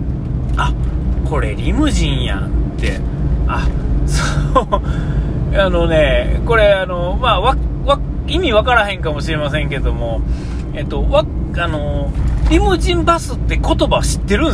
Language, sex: Japanese, male